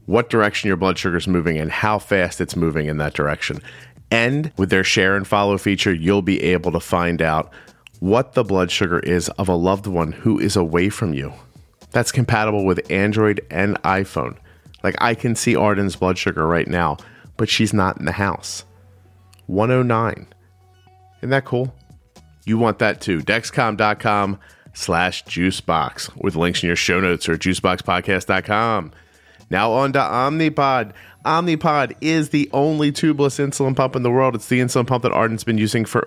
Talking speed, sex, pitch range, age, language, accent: 175 wpm, male, 95-115 Hz, 30-49, English, American